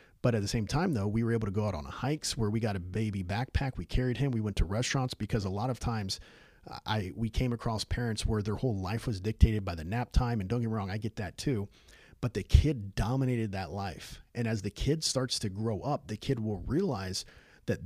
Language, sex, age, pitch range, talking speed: English, male, 40-59, 100-125 Hz, 250 wpm